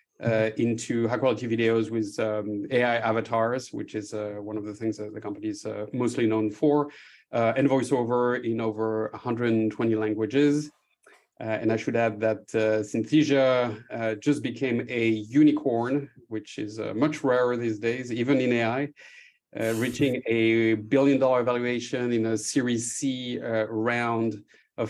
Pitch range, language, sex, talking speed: 110-130 Hz, English, male, 155 wpm